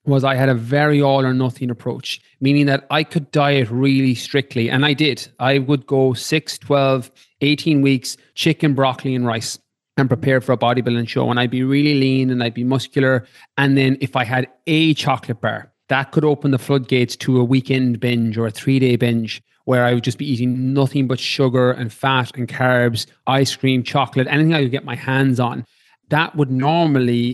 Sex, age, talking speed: male, 30-49, 200 wpm